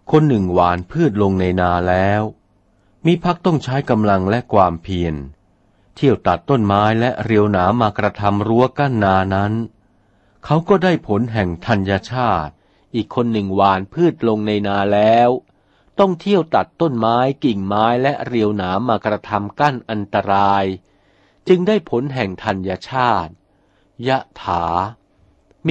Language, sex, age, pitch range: Thai, male, 60-79, 100-140 Hz